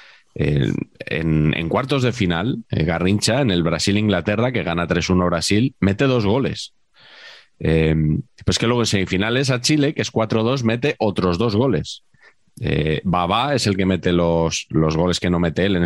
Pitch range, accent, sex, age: 85-110 Hz, Spanish, male, 30-49